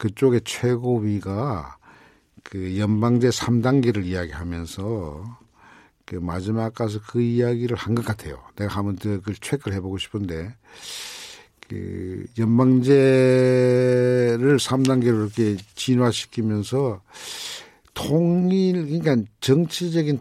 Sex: male